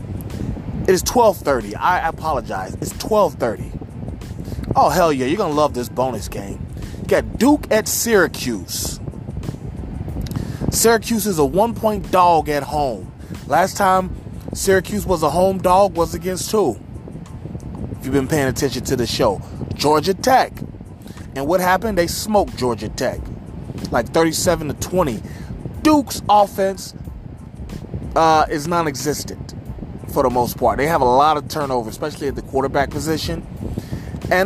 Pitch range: 140-205 Hz